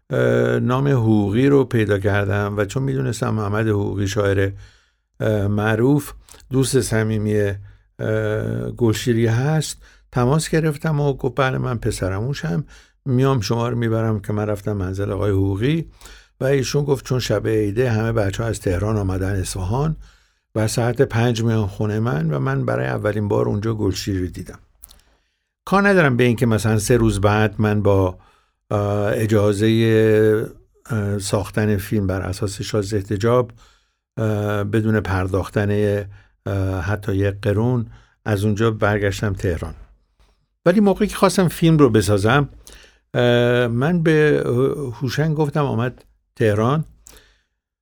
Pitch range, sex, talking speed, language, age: 100-130 Hz, male, 125 wpm, Persian, 60-79